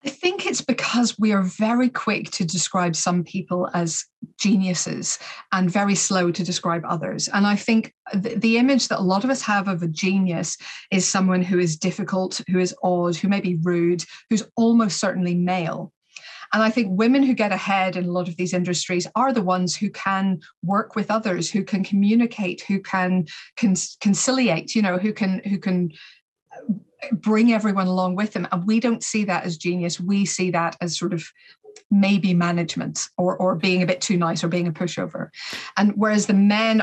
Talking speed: 195 wpm